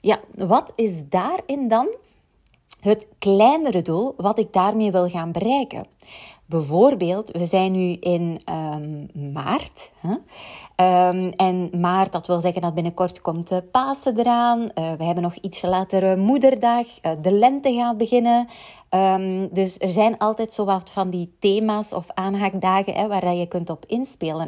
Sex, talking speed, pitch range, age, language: female, 155 wpm, 180-225 Hz, 30-49, Dutch